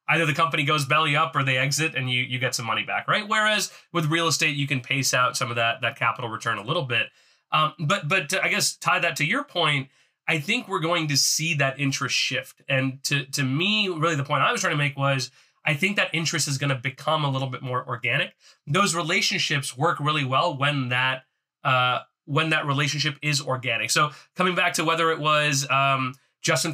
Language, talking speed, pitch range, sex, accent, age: English, 225 wpm, 135-165 Hz, male, American, 30-49